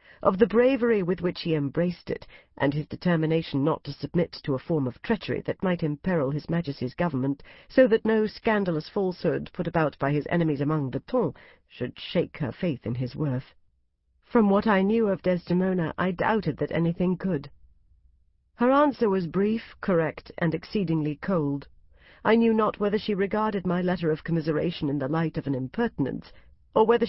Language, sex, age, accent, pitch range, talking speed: English, female, 50-69, British, 140-200 Hz, 180 wpm